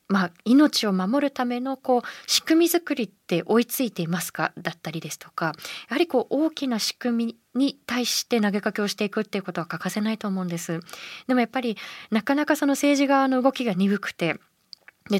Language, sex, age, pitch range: Japanese, female, 20-39, 180-255 Hz